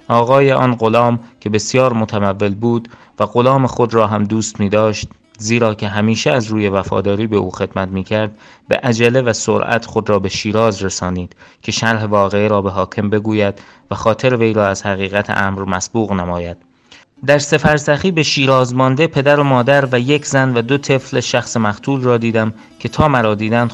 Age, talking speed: 30-49, 180 wpm